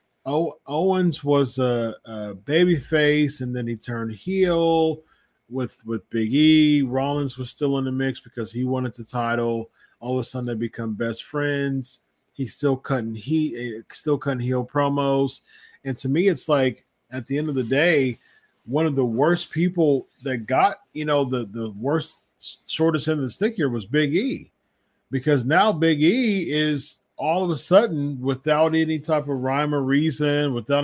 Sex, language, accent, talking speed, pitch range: male, English, American, 175 wpm, 120-150 Hz